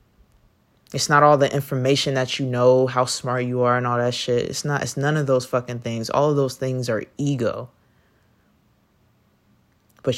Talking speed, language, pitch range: 185 wpm, English, 120-155 Hz